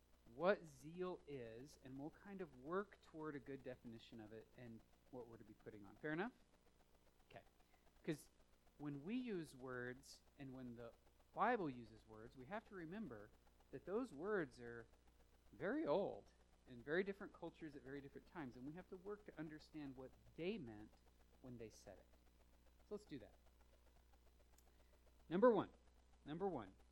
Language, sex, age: English, male, 40-59